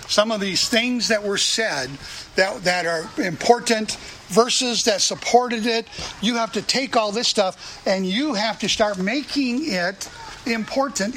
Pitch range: 180-225 Hz